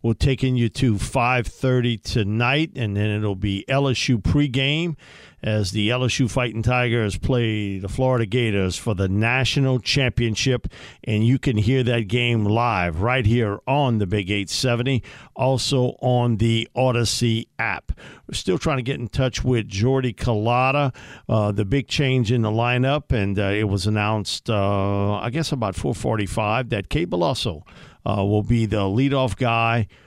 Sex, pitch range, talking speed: male, 110-130 Hz, 160 wpm